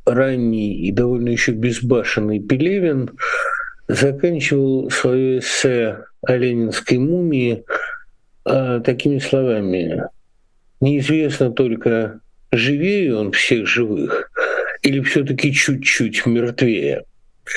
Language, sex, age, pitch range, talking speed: Russian, male, 60-79, 125-180 Hz, 85 wpm